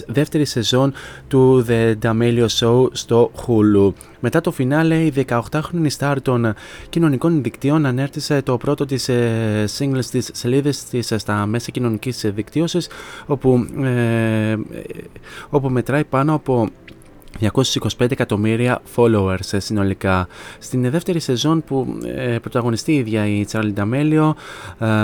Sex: male